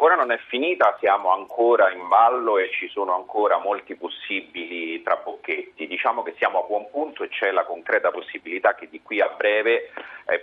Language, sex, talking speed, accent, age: Italian, male, 180 wpm, native, 30-49